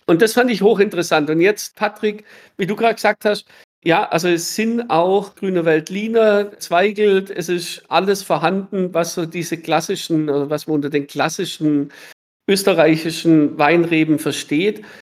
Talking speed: 145 wpm